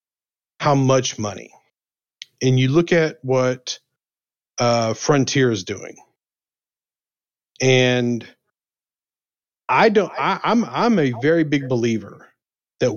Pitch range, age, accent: 125-150 Hz, 40-59, American